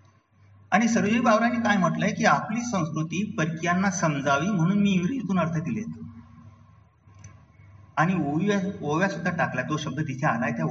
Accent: native